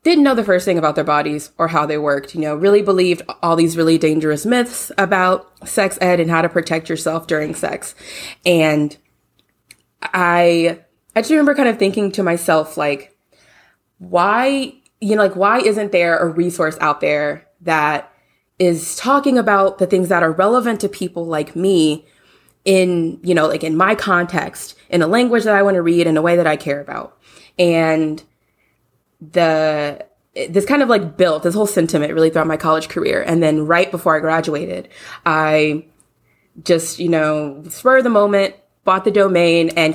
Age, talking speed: 20-39, 180 wpm